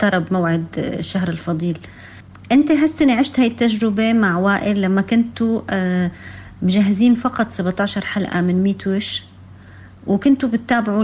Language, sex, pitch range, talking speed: Arabic, female, 175-230 Hz, 115 wpm